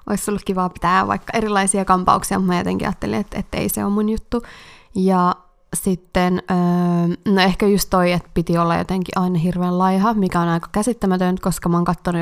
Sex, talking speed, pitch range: female, 190 wpm, 180-210 Hz